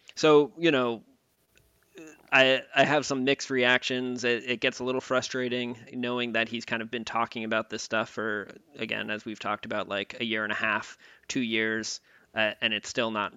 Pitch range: 105-120 Hz